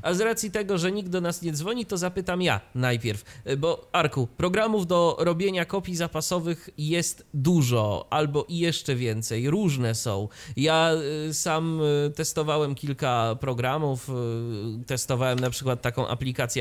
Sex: male